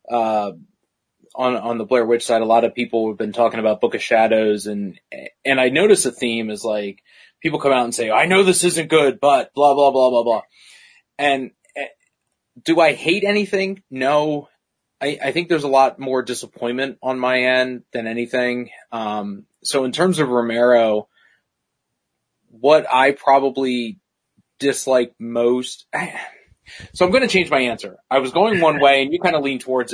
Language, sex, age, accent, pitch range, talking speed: English, male, 20-39, American, 110-145 Hz, 180 wpm